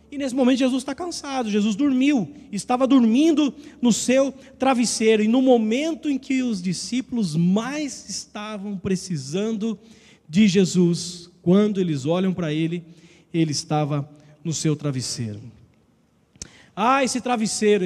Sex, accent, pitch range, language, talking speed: male, Brazilian, 190-250 Hz, Portuguese, 130 wpm